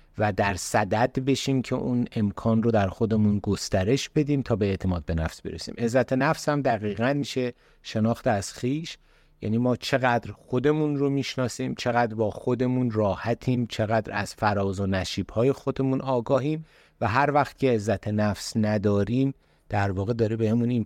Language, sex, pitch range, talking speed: Persian, male, 100-125 Hz, 160 wpm